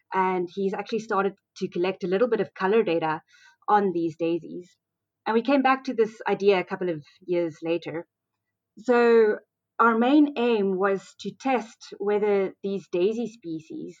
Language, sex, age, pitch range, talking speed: English, female, 20-39, 170-225 Hz, 165 wpm